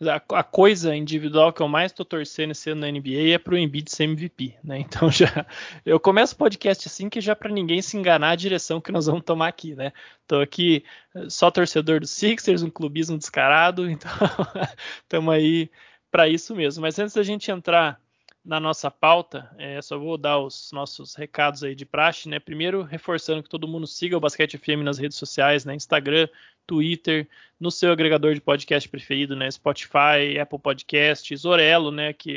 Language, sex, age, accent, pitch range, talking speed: Portuguese, male, 20-39, Brazilian, 145-165 Hz, 190 wpm